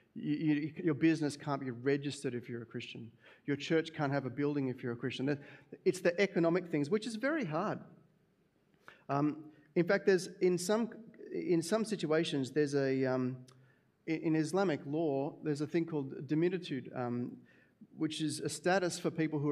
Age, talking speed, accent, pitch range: 40-59, 180 wpm, Australian, 140-195 Hz